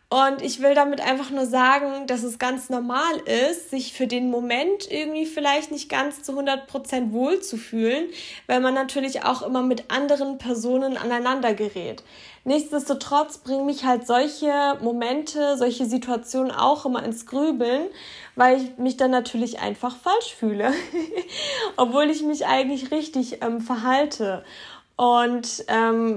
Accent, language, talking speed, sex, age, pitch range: German, German, 145 wpm, female, 20-39, 245-285 Hz